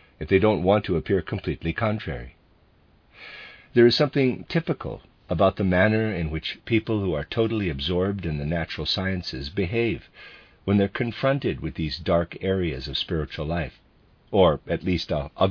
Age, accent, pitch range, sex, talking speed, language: 50-69, American, 85-110 Hz, male, 165 wpm, English